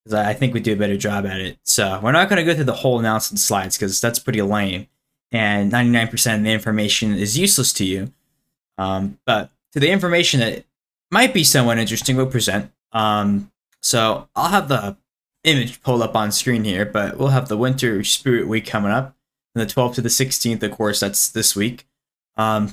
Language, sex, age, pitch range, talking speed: English, male, 10-29, 110-140 Hz, 210 wpm